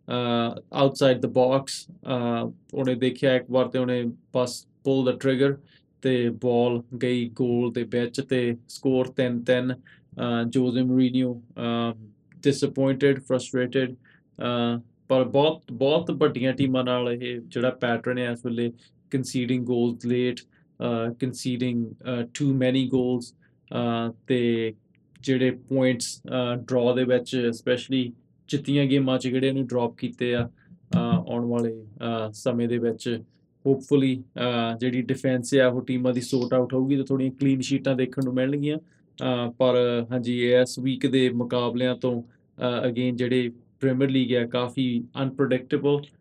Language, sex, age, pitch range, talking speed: Punjabi, male, 20-39, 120-130 Hz, 135 wpm